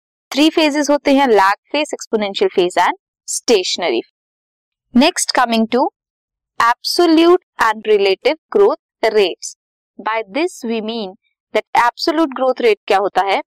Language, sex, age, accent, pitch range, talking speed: Hindi, female, 20-39, native, 220-350 Hz, 85 wpm